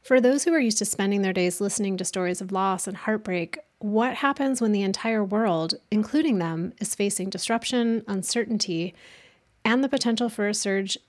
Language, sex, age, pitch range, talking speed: English, female, 30-49, 190-230 Hz, 185 wpm